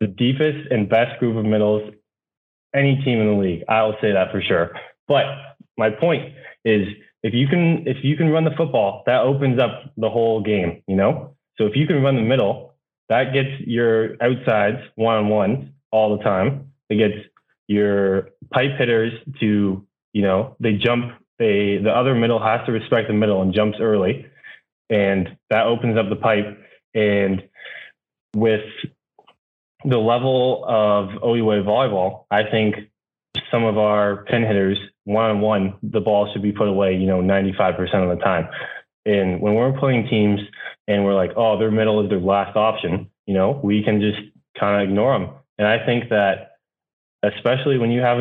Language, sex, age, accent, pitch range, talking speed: English, male, 20-39, American, 100-115 Hz, 175 wpm